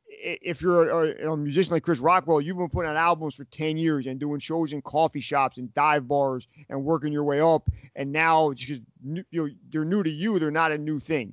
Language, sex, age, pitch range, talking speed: English, male, 40-59, 145-170 Hz, 240 wpm